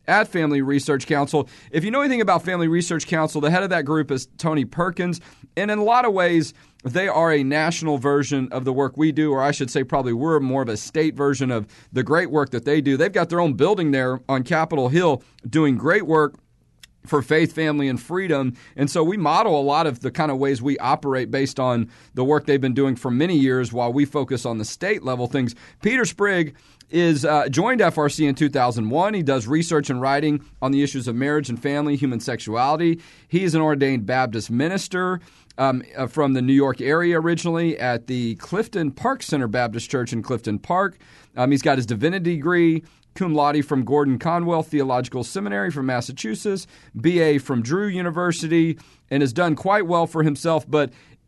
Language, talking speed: English, 205 wpm